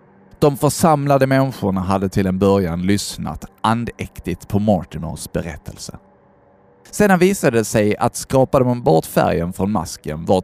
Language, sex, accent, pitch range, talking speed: Swedish, male, native, 95-125 Hz, 140 wpm